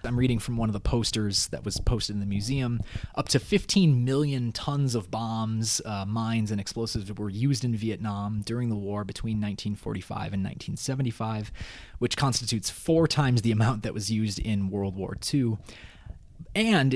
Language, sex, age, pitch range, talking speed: English, male, 20-39, 105-130 Hz, 175 wpm